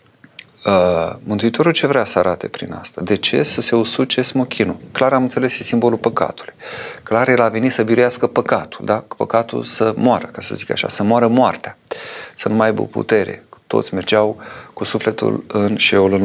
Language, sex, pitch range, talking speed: Romanian, male, 95-115 Hz, 175 wpm